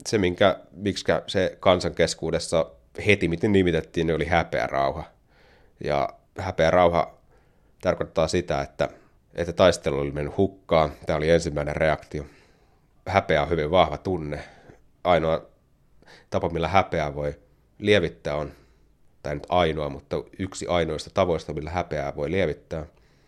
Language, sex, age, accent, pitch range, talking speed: Finnish, male, 30-49, native, 75-90 Hz, 120 wpm